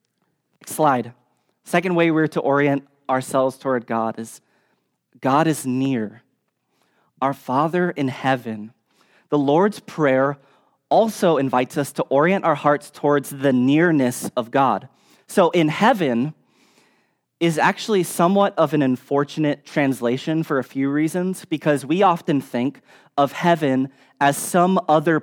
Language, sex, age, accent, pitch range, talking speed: English, male, 20-39, American, 130-160 Hz, 130 wpm